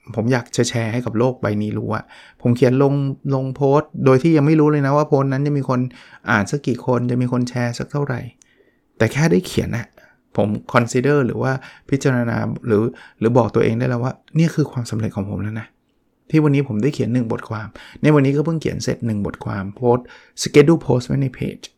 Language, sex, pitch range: Thai, male, 115-145 Hz